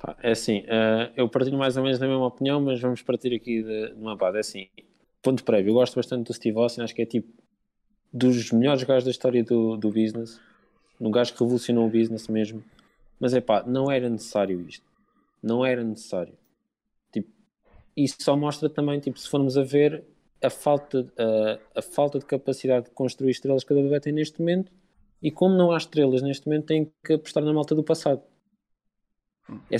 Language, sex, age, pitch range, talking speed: Portuguese, male, 20-39, 115-150 Hz, 195 wpm